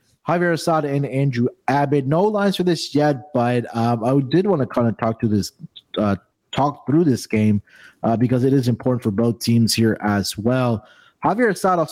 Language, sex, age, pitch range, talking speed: English, male, 30-49, 110-140 Hz, 200 wpm